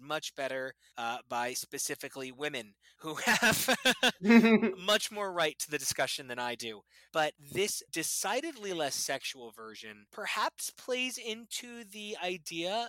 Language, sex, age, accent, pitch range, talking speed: English, male, 20-39, American, 130-190 Hz, 130 wpm